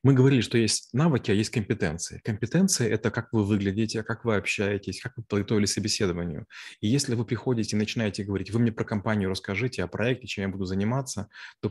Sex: male